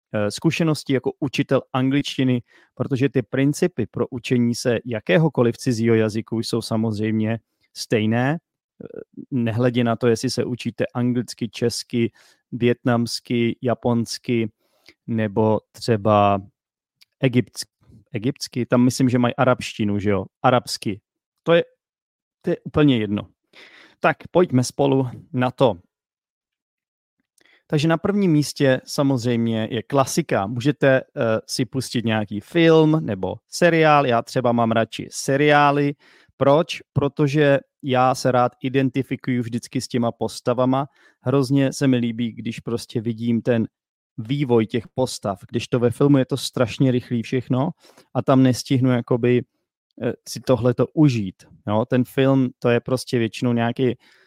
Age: 30-49